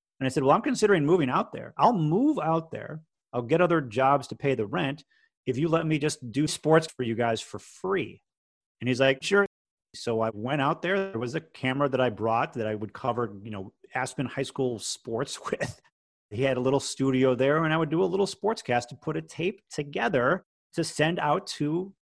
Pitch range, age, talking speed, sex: 120-160 Hz, 30-49, 225 wpm, male